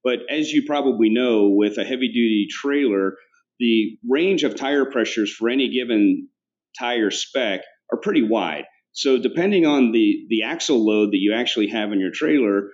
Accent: American